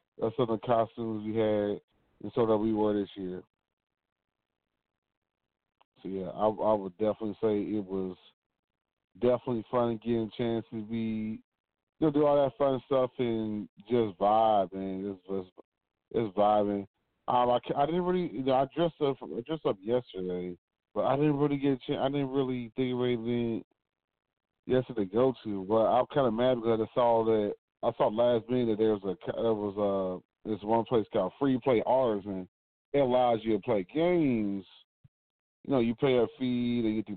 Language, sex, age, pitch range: English, male, 30-49, 100-125 Hz